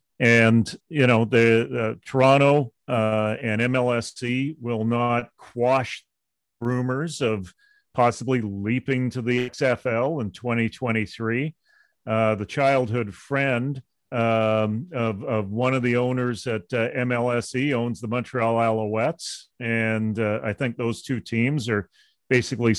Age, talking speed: 40-59, 125 wpm